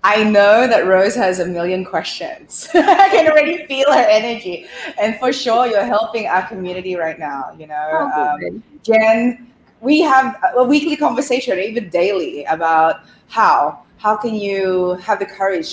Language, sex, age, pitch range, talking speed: English, female, 20-39, 170-210 Hz, 160 wpm